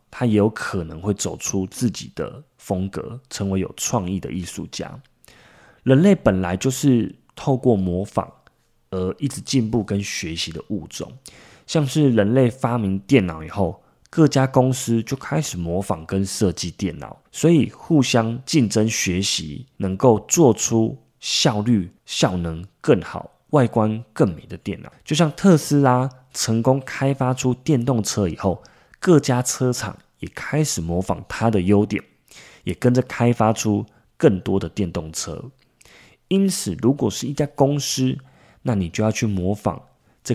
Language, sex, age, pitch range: Chinese, male, 20-39, 95-130 Hz